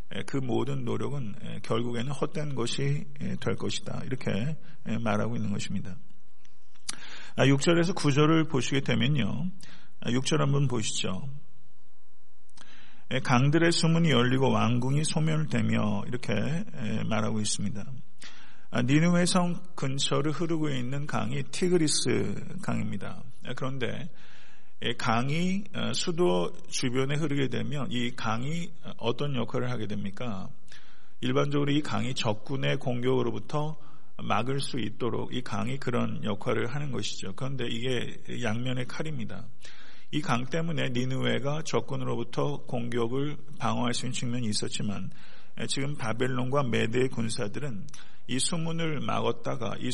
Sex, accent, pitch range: male, native, 115-150 Hz